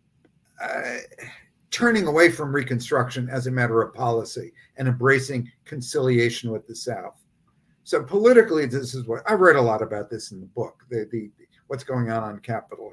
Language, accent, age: English, American, 50-69